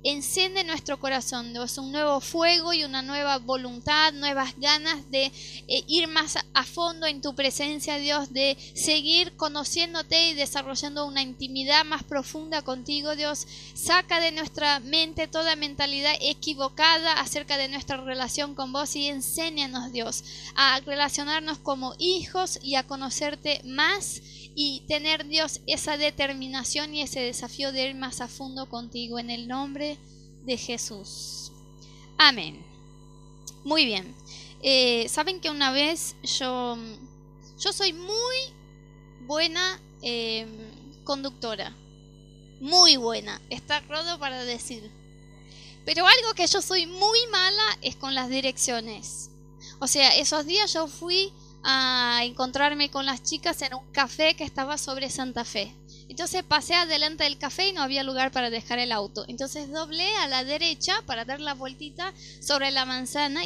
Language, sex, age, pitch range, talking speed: Spanish, female, 20-39, 265-320 Hz, 145 wpm